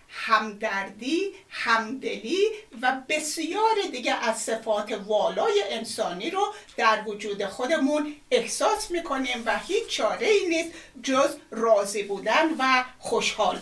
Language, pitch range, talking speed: Persian, 220-335 Hz, 110 wpm